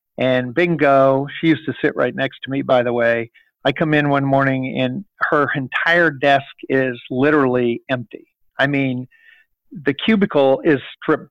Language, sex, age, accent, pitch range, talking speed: English, male, 50-69, American, 130-150 Hz, 165 wpm